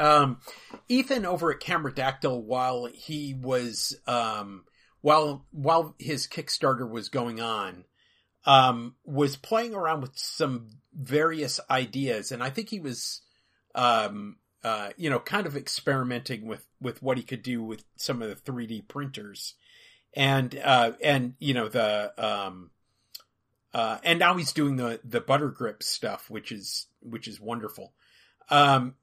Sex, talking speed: male, 145 wpm